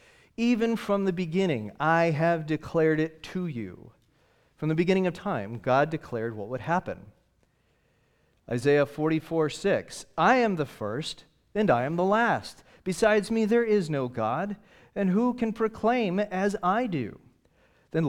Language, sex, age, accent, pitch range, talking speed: English, male, 40-59, American, 125-195 Hz, 155 wpm